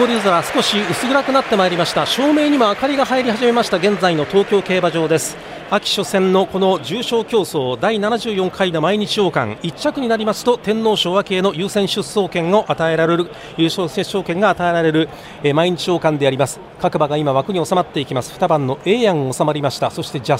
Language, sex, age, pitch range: Japanese, male, 40-59, 170-230 Hz